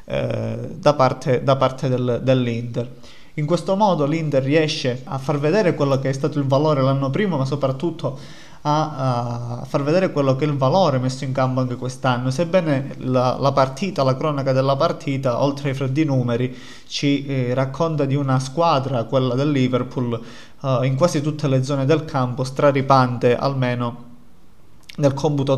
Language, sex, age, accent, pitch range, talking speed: Italian, male, 20-39, native, 130-150 Hz, 160 wpm